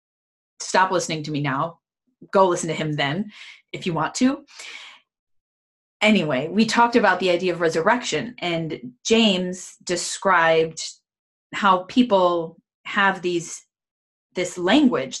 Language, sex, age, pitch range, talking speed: English, female, 20-39, 165-215 Hz, 120 wpm